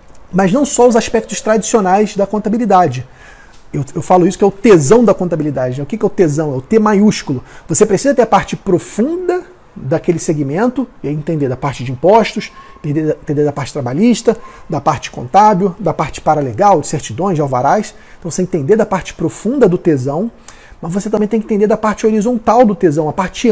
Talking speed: 190 wpm